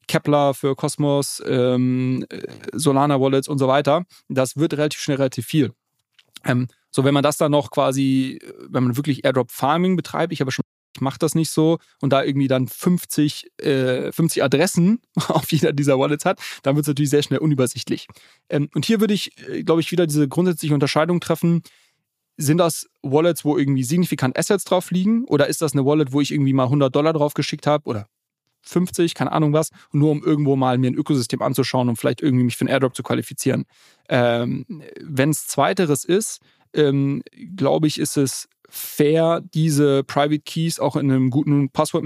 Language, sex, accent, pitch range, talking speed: German, male, German, 130-160 Hz, 190 wpm